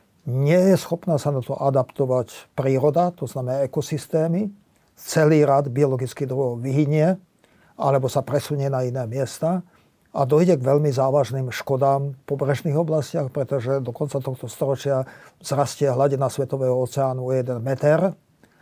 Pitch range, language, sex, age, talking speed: 130-150 Hz, Slovak, male, 50-69, 140 wpm